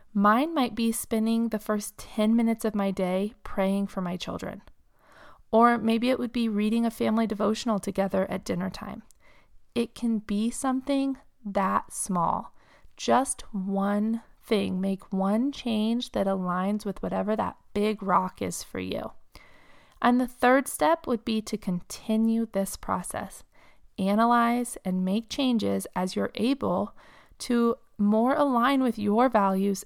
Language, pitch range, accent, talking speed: English, 195-235 Hz, American, 145 wpm